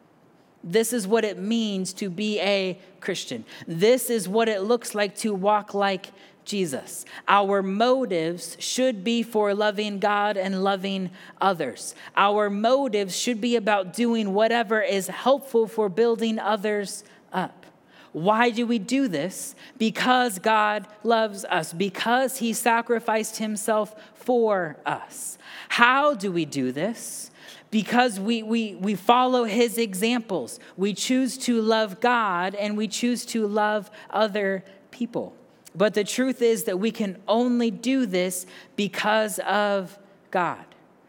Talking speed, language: 135 wpm, English